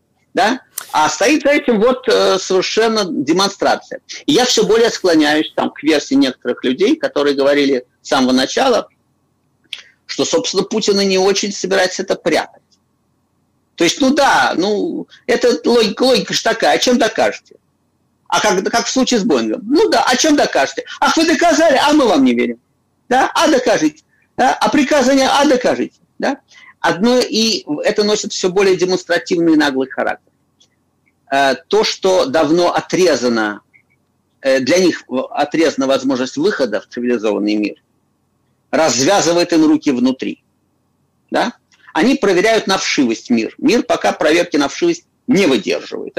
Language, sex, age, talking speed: Russian, male, 50-69, 140 wpm